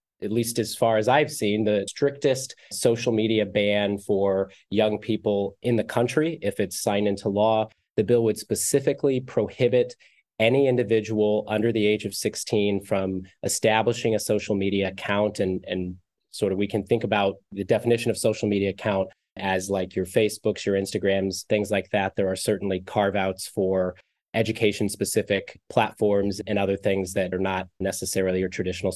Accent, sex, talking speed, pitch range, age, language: American, male, 170 wpm, 100-115 Hz, 30-49, English